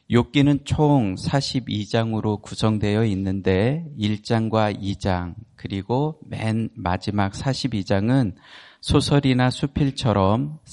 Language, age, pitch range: Korean, 40-59, 100-130 Hz